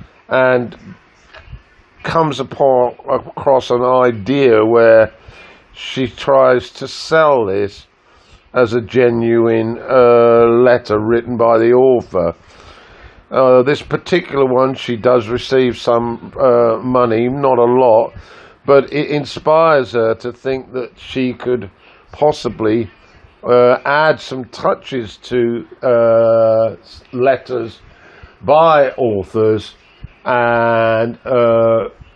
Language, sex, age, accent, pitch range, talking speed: English, male, 50-69, British, 115-135 Hz, 100 wpm